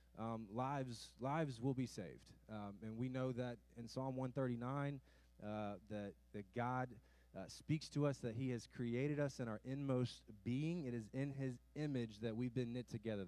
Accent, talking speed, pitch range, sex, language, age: American, 185 wpm, 100-130 Hz, male, English, 20-39